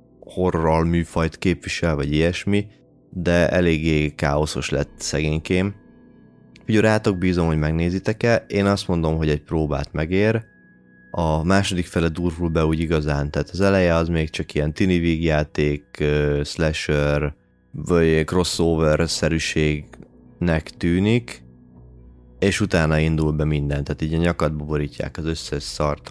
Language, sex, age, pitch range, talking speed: Hungarian, male, 20-39, 75-90 Hz, 125 wpm